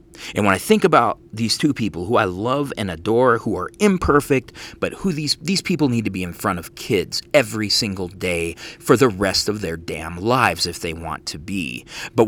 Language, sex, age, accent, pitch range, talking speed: English, male, 30-49, American, 90-125 Hz, 215 wpm